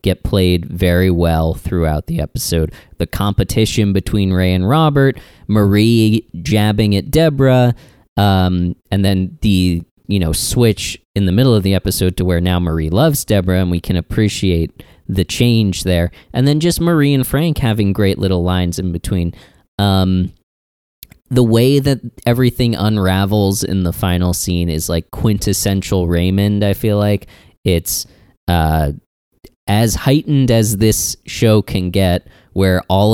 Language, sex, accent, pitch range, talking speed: English, male, American, 90-115 Hz, 150 wpm